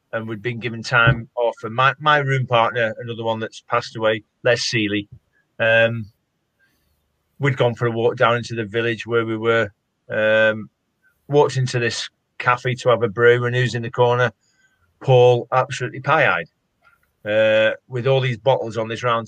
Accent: British